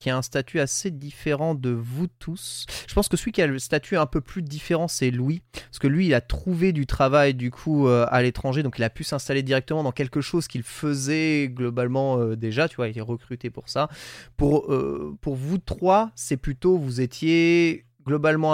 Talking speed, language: 215 wpm, French